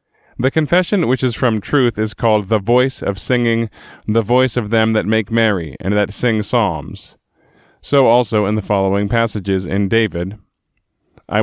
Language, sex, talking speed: English, male, 170 wpm